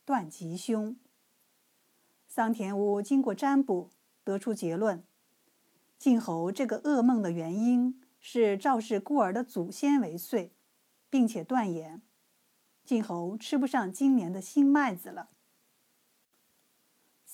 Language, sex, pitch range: Chinese, female, 195-270 Hz